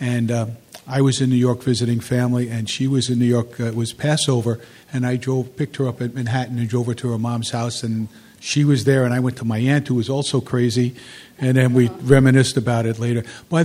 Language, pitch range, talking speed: English, 115-135 Hz, 245 wpm